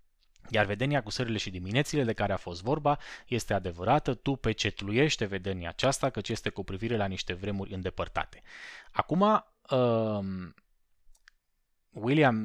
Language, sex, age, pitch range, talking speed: Romanian, male, 20-39, 95-130 Hz, 135 wpm